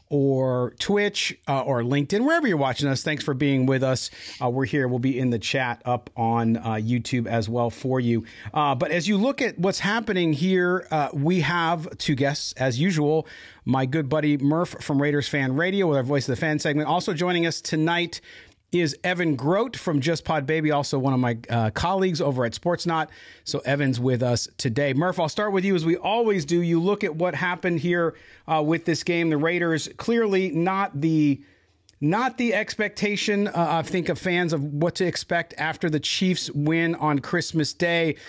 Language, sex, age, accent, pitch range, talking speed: English, male, 40-59, American, 140-180 Hz, 200 wpm